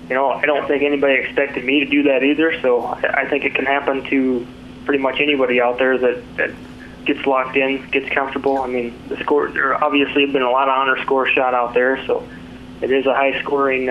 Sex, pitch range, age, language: male, 125-140 Hz, 20-39, English